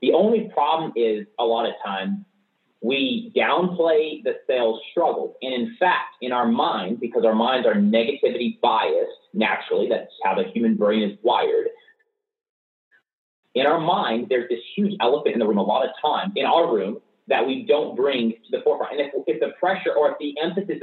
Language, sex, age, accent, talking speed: English, male, 30-49, American, 190 wpm